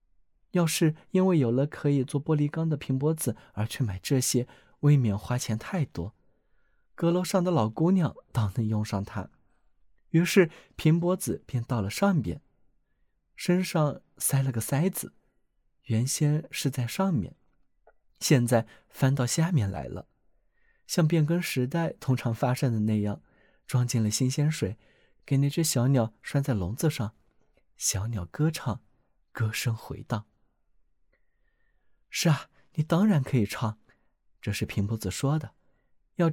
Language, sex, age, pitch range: Chinese, male, 20-39, 110-155 Hz